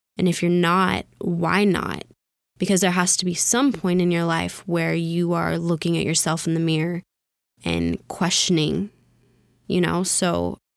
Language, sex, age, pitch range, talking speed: English, female, 20-39, 170-190 Hz, 165 wpm